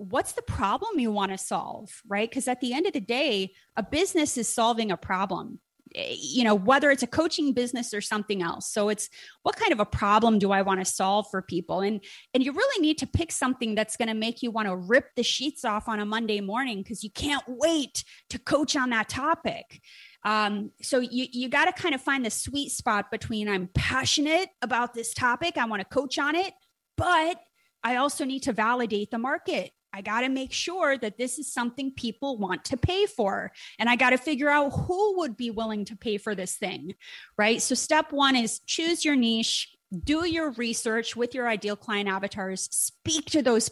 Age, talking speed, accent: 30-49, 215 wpm, American